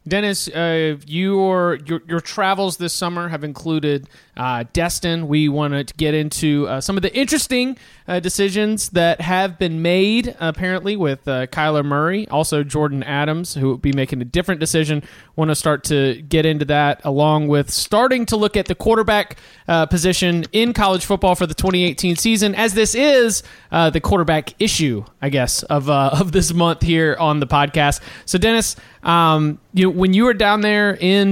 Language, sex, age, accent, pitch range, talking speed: English, male, 30-49, American, 150-190 Hz, 185 wpm